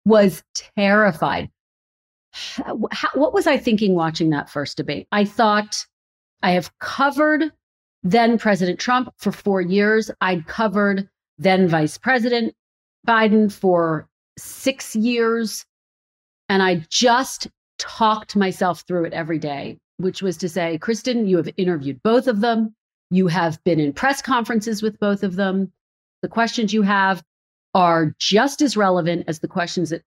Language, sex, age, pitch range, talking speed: English, female, 40-59, 165-220 Hz, 140 wpm